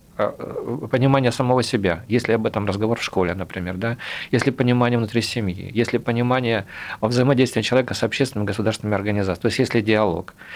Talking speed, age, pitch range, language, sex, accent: 155 wpm, 40-59, 105-130 Hz, Russian, male, native